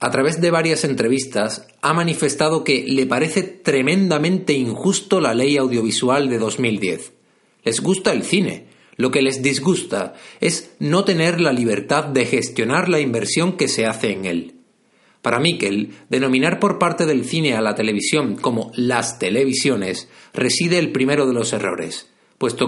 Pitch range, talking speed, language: 115-165 Hz, 155 wpm, Spanish